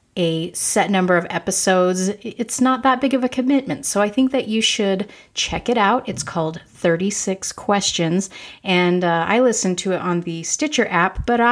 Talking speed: 190 wpm